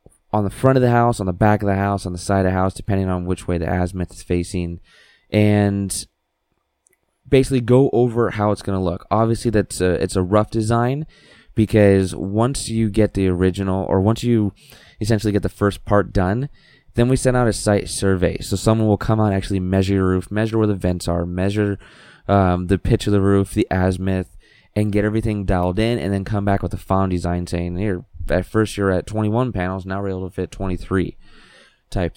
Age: 20-39